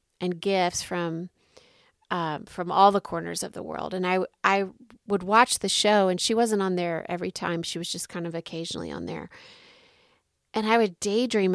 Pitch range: 175-205 Hz